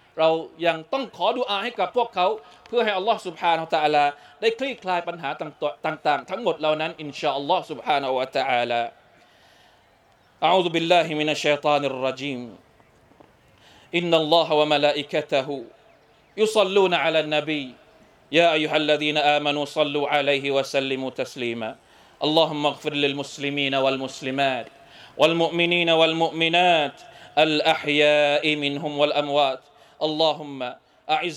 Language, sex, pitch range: Thai, male, 145-170 Hz